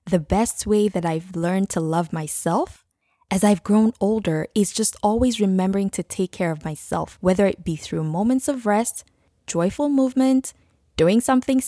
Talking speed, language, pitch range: 170 wpm, English, 170-215 Hz